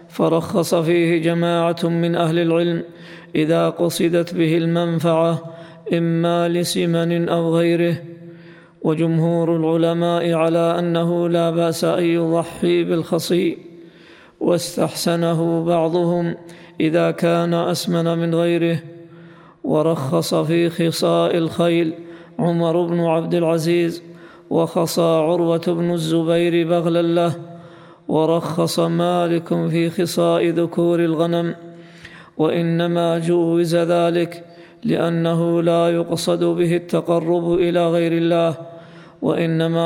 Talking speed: 95 wpm